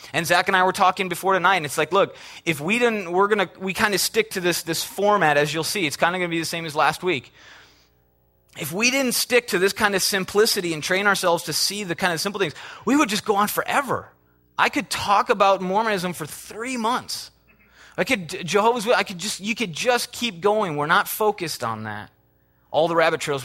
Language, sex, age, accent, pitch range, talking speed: English, male, 30-49, American, 160-220 Hz, 240 wpm